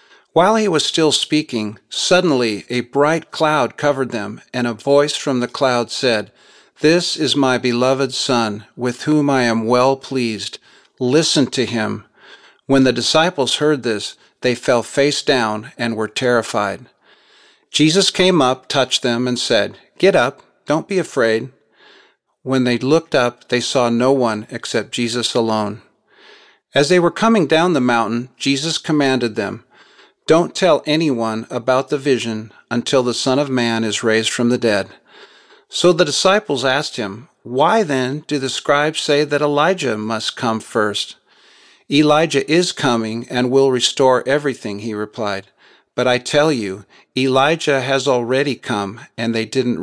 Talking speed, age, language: 155 wpm, 40-59, English